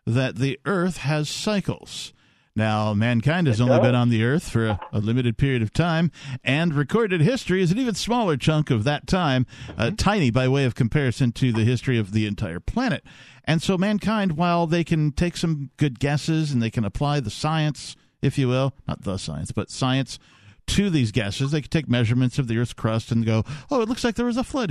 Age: 50-69